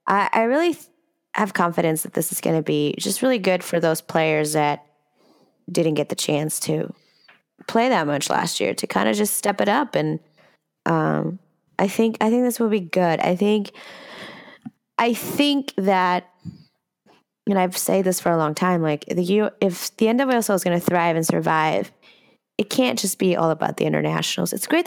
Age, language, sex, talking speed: 20-39, English, female, 190 wpm